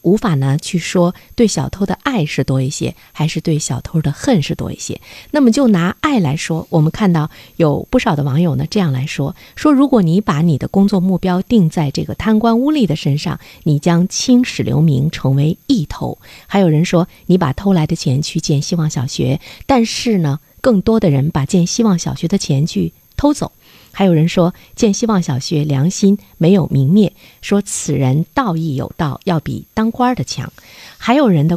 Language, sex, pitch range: Chinese, female, 155-200 Hz